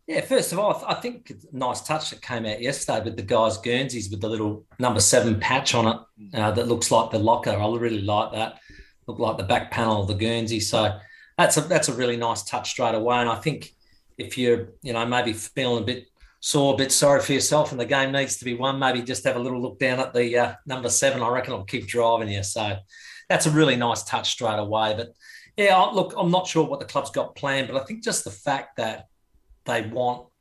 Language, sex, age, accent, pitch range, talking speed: English, male, 40-59, Australian, 110-135 Hz, 245 wpm